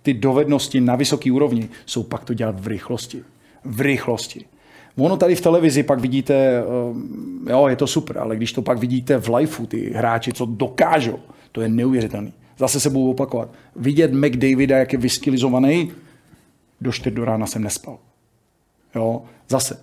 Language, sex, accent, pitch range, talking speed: Czech, male, native, 120-140 Hz, 160 wpm